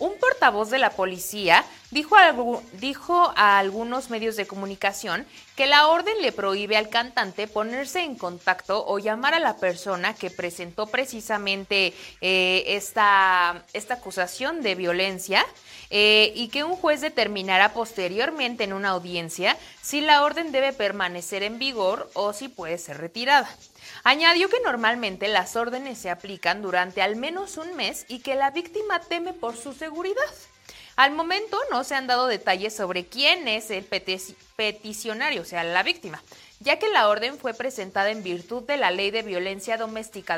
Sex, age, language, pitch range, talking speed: female, 30-49, Spanish, 190-270 Hz, 160 wpm